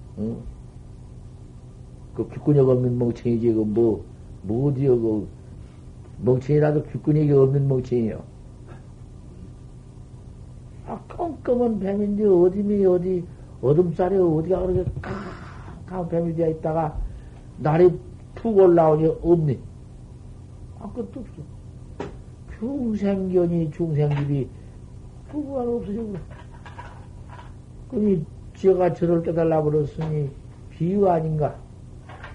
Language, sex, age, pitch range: Korean, male, 60-79, 115-155 Hz